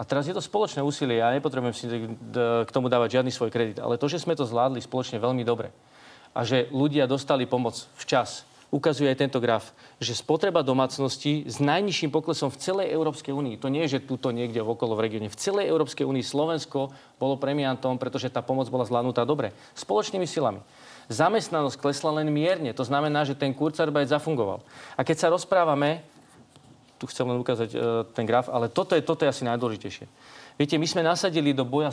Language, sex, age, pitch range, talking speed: Slovak, male, 40-59, 125-155 Hz, 190 wpm